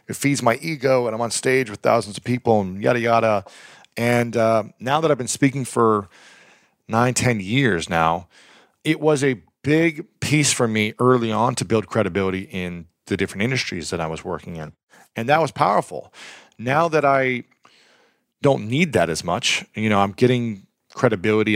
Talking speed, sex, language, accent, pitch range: 180 wpm, male, English, American, 100-125 Hz